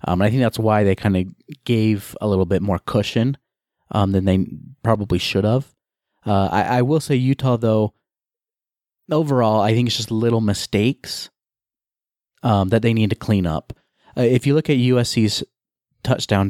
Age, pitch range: 30-49, 95-115 Hz